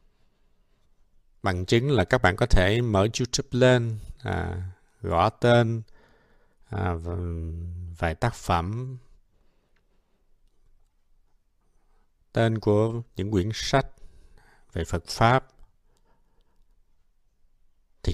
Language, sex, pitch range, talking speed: Vietnamese, male, 90-115 Hz, 80 wpm